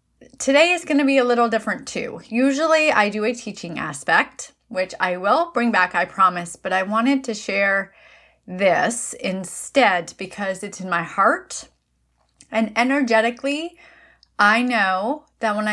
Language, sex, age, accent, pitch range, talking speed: English, female, 30-49, American, 185-250 Hz, 155 wpm